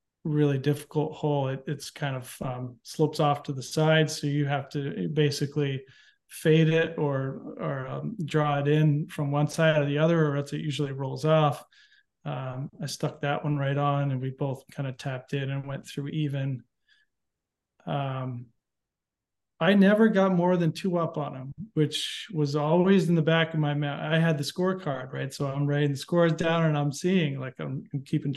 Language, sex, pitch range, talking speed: English, male, 140-165 Hz, 190 wpm